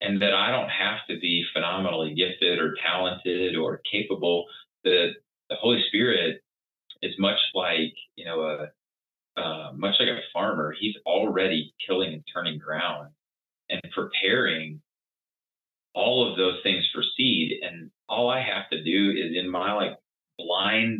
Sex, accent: male, American